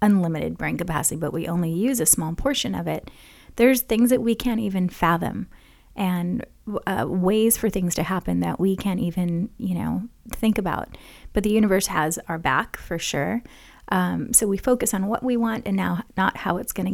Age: 30-49